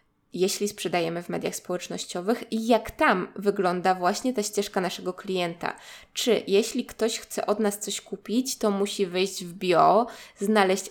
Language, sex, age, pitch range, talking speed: Polish, female, 20-39, 185-220 Hz, 155 wpm